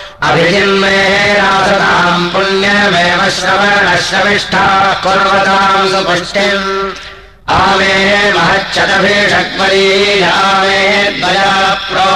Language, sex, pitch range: Russian, male, 190-195 Hz